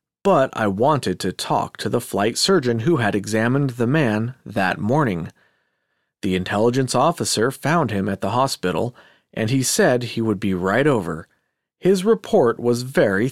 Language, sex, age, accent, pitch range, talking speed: English, male, 40-59, American, 105-155 Hz, 160 wpm